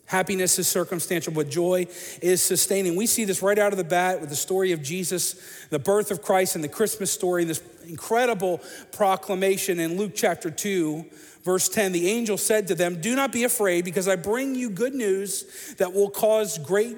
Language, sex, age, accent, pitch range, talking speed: English, male, 40-59, American, 180-230 Hz, 200 wpm